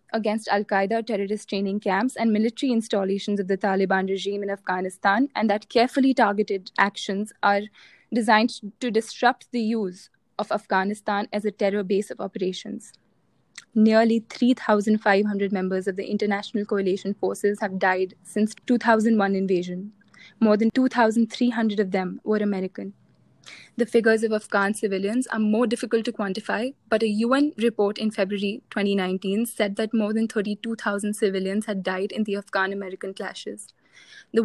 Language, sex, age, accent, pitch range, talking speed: English, female, 20-39, Indian, 200-230 Hz, 145 wpm